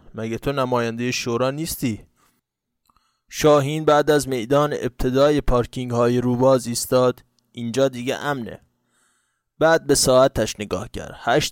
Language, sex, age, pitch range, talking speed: Persian, male, 20-39, 115-140 Hz, 120 wpm